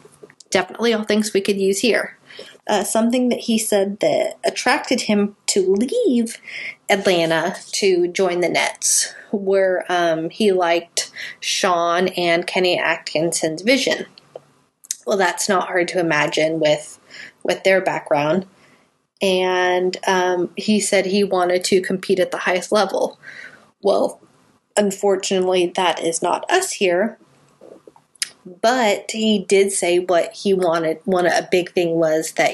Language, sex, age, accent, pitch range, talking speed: English, female, 30-49, American, 170-205 Hz, 135 wpm